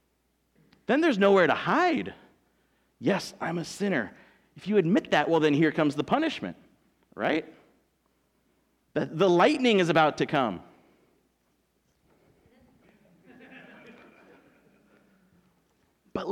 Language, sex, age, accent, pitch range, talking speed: English, male, 40-59, American, 195-255 Hz, 105 wpm